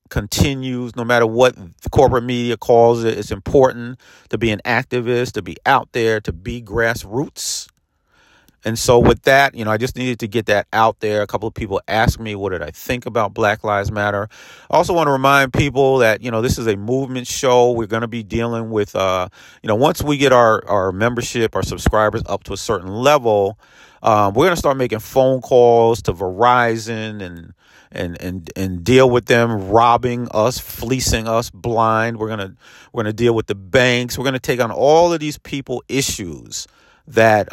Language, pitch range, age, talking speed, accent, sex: English, 105-125 Hz, 40-59, 200 wpm, American, male